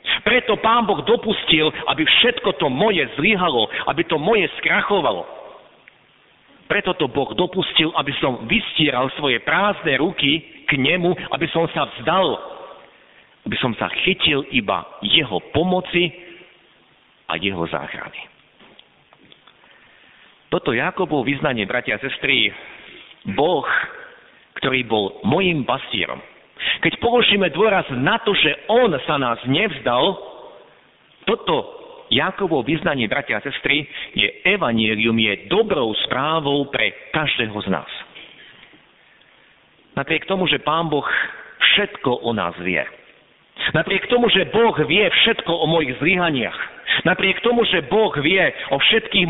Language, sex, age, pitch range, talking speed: Slovak, male, 50-69, 140-205 Hz, 120 wpm